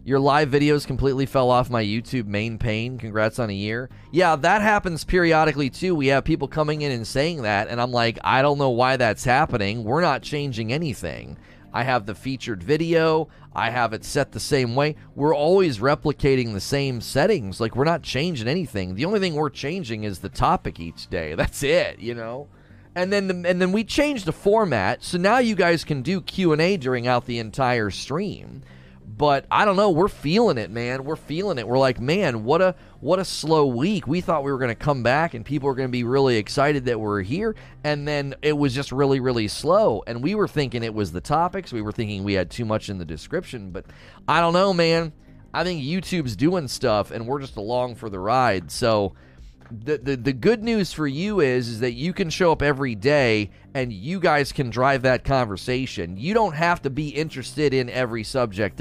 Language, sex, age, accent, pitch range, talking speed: English, male, 30-49, American, 110-155 Hz, 215 wpm